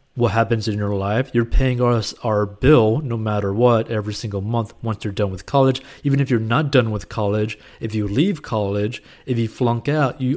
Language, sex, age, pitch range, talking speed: English, male, 30-49, 105-130 Hz, 215 wpm